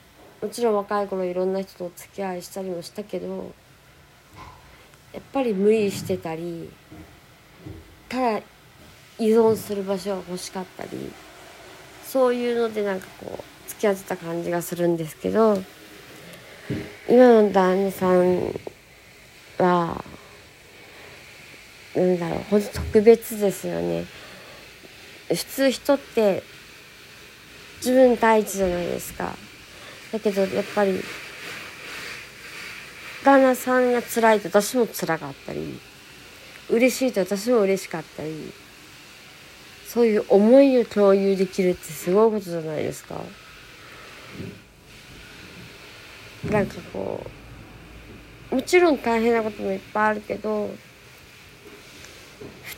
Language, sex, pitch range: Japanese, female, 180-230 Hz